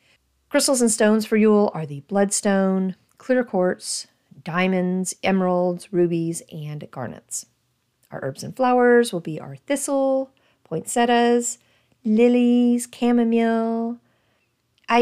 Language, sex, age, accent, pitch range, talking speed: English, female, 40-59, American, 175-235 Hz, 105 wpm